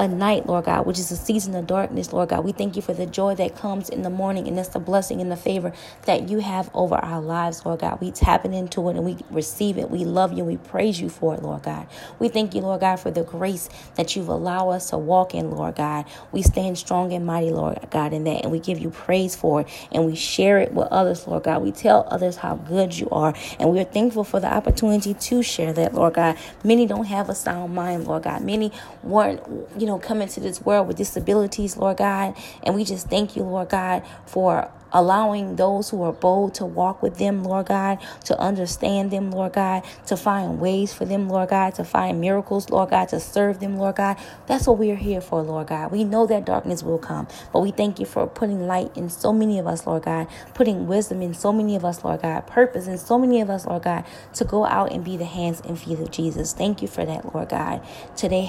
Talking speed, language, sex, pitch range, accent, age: 245 wpm, English, female, 170-200 Hz, American, 20-39